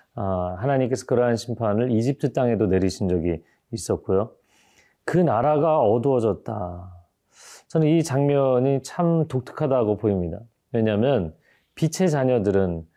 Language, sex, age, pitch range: Korean, male, 40-59, 100-150 Hz